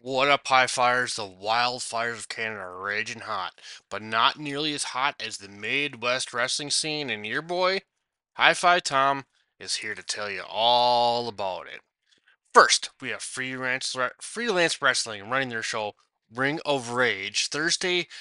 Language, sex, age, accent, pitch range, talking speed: English, male, 20-39, American, 115-145 Hz, 155 wpm